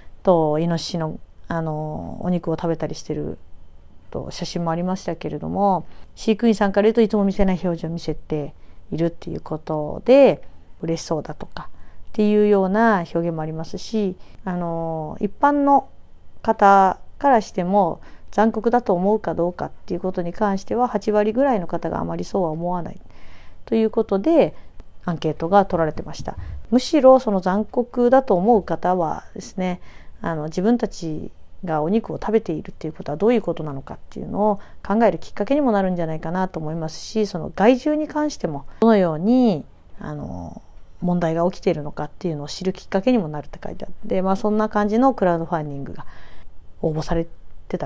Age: 40-59